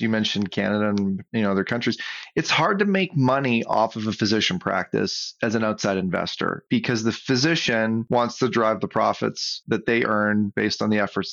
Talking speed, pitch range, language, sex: 185 wpm, 105-125 Hz, English, male